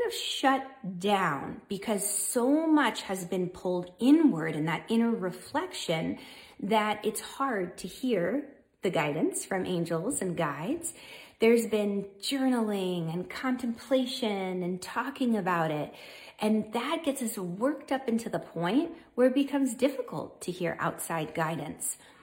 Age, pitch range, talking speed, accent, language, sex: 30-49, 185-280 Hz, 135 wpm, American, English, female